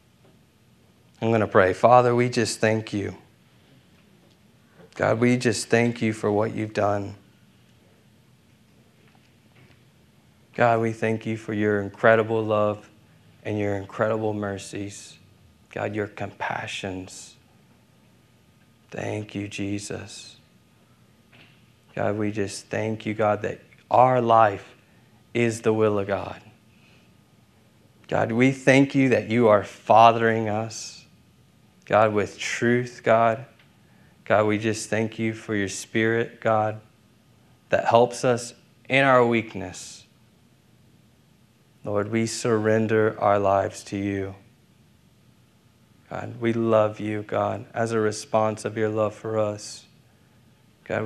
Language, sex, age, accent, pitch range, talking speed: English, male, 40-59, American, 105-115 Hz, 115 wpm